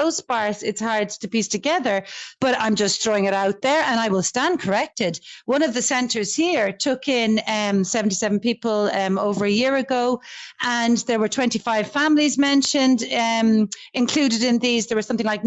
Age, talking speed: 40-59, 180 wpm